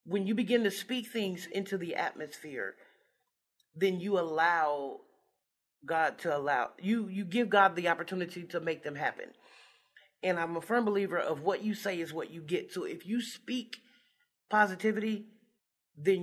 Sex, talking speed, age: male, 165 wpm, 30-49